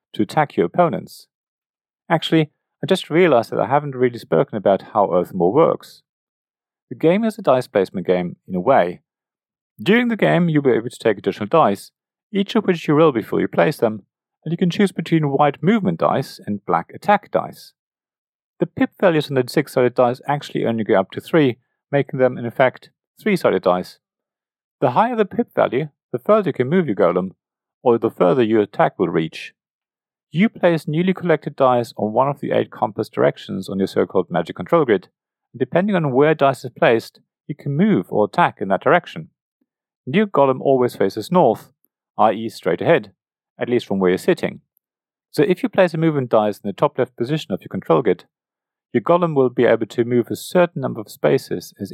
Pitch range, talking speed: 120-175 Hz, 200 wpm